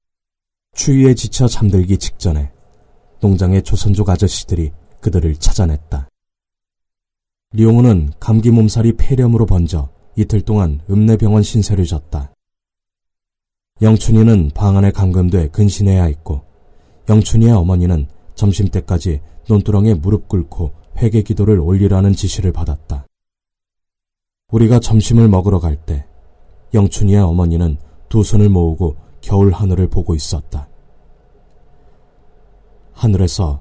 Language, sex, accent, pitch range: Korean, male, native, 85-105 Hz